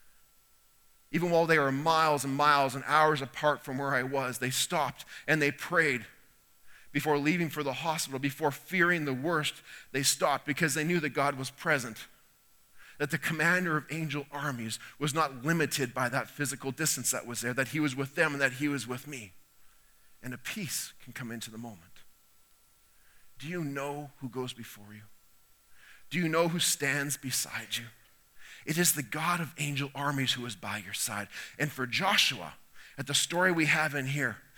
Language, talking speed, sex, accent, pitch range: English, 185 wpm, male, American, 135-170 Hz